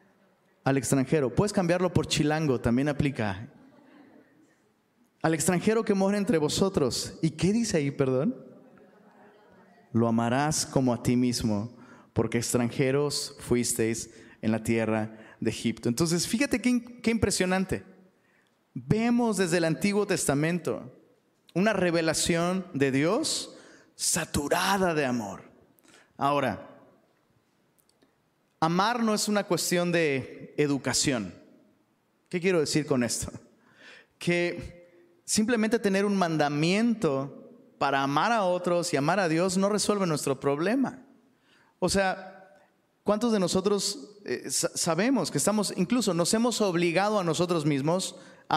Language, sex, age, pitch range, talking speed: Spanish, male, 30-49, 135-195 Hz, 120 wpm